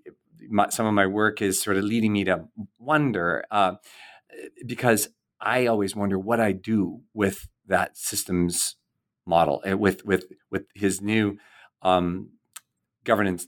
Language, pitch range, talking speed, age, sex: English, 90-115 Hz, 135 wpm, 40-59, male